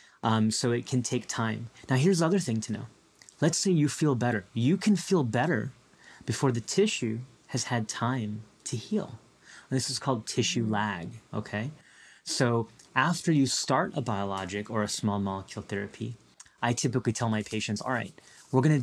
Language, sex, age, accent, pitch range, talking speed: English, male, 30-49, American, 110-130 Hz, 180 wpm